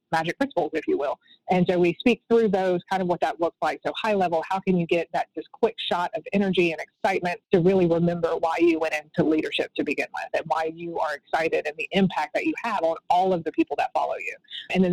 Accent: American